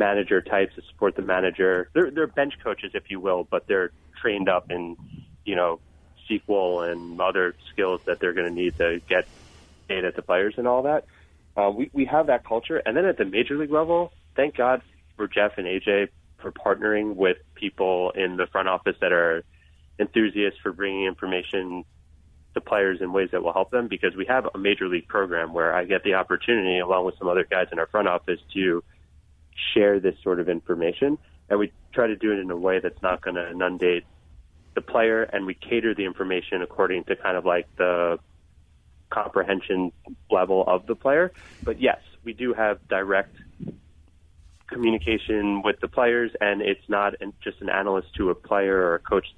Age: 30-49